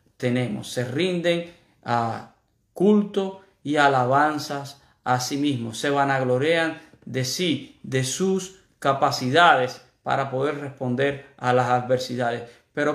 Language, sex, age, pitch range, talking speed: Spanish, male, 50-69, 135-180 Hz, 115 wpm